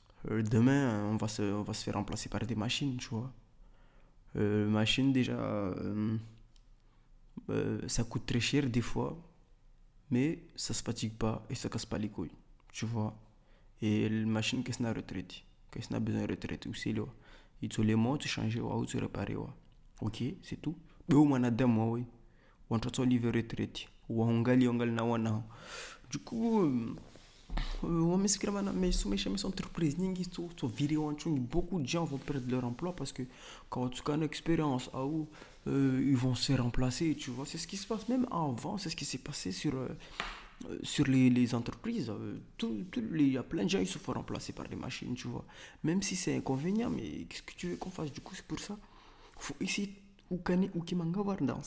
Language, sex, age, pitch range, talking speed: French, male, 20-39, 115-165 Hz, 195 wpm